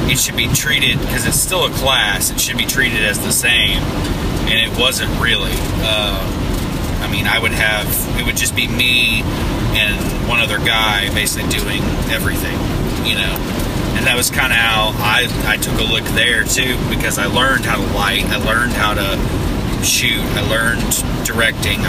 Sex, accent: male, American